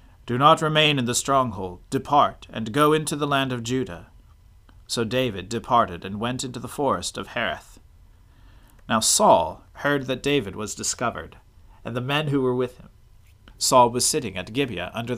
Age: 40-59